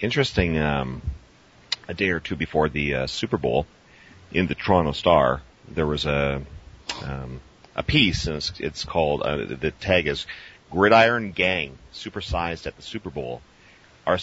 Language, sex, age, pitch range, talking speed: English, male, 40-59, 70-85 Hz, 150 wpm